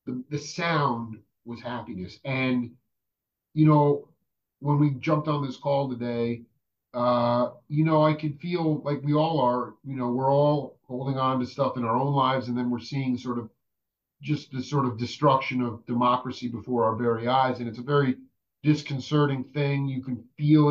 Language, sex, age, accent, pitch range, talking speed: English, male, 40-59, American, 125-145 Hz, 185 wpm